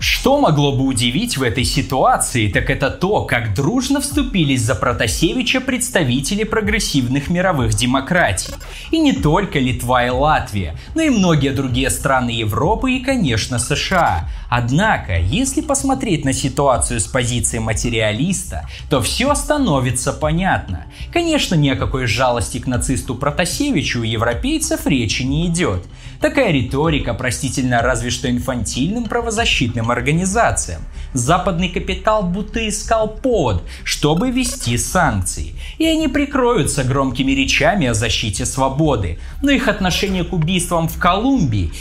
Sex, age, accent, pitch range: male, 20-39, native, 120-195 Hz